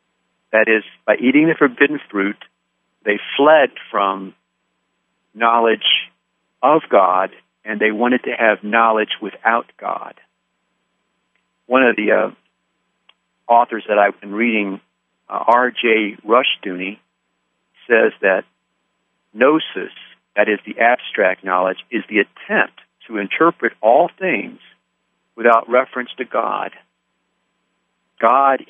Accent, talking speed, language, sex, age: American, 110 wpm, English, male, 50-69